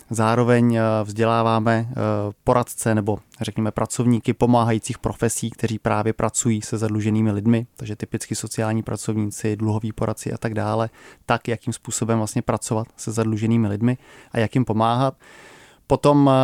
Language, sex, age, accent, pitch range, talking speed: Czech, male, 20-39, native, 110-115 Hz, 130 wpm